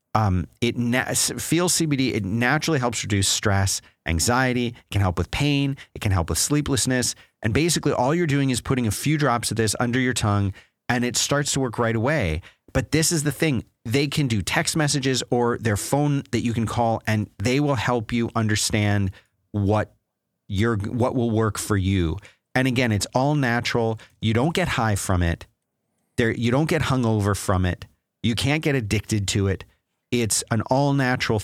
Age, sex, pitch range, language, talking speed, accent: 30-49, male, 100-130 Hz, English, 195 wpm, American